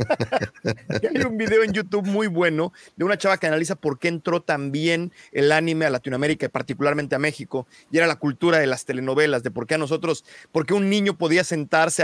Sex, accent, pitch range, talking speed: male, Mexican, 155-195 Hz, 210 wpm